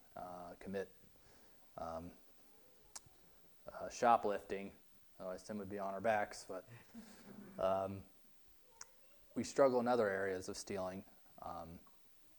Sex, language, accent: male, English, American